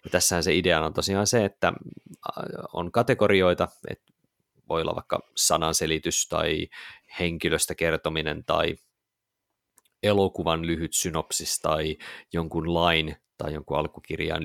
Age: 30-49